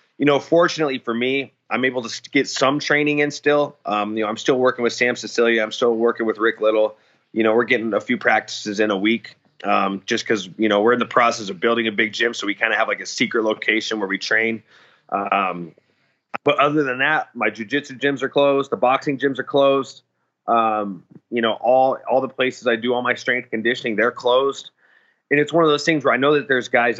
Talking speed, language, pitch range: 235 wpm, English, 110-135 Hz